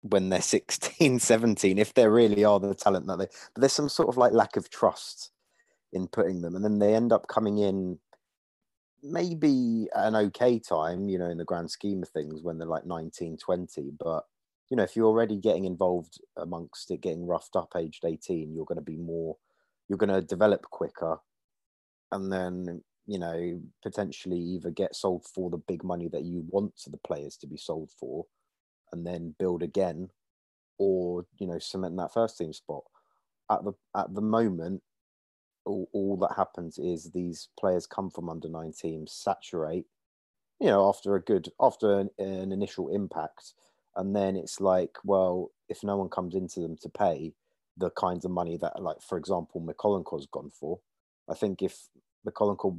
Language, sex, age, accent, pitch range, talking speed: English, male, 30-49, British, 85-100 Hz, 185 wpm